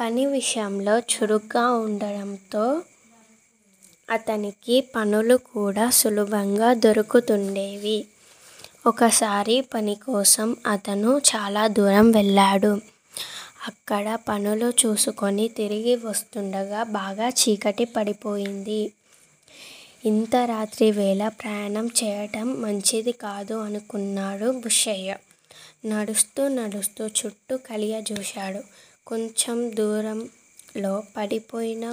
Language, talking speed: Telugu, 75 wpm